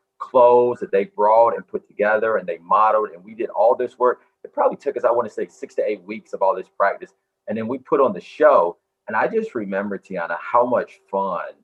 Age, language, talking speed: 30-49, English, 240 wpm